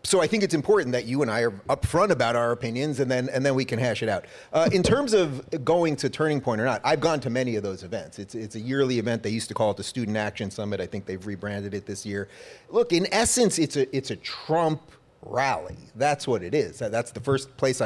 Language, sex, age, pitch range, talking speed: English, male, 30-49, 120-155 Hz, 260 wpm